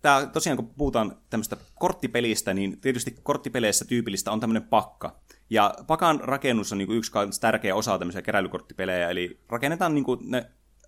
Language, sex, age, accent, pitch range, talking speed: Finnish, male, 20-39, native, 95-125 Hz, 140 wpm